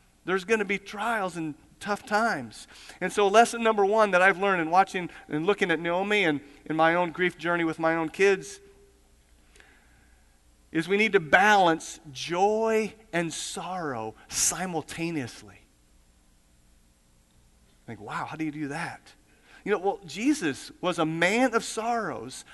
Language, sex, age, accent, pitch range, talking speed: English, male, 40-59, American, 155-230 Hz, 150 wpm